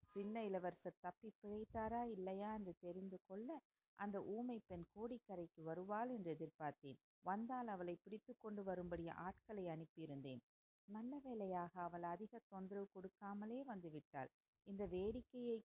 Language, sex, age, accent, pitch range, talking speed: Tamil, female, 50-69, native, 180-225 Hz, 115 wpm